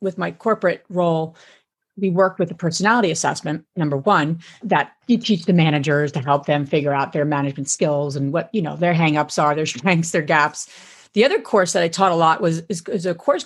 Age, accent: 40-59, American